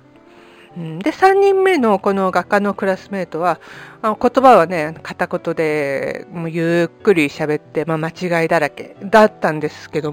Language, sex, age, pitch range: Japanese, female, 40-59, 165-220 Hz